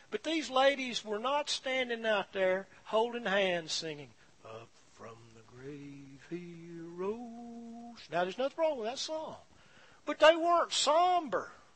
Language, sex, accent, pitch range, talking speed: English, male, American, 215-300 Hz, 145 wpm